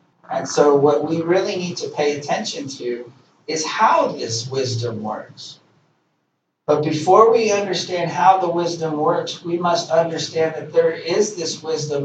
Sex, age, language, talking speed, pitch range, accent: male, 40-59, English, 155 wpm, 145-185 Hz, American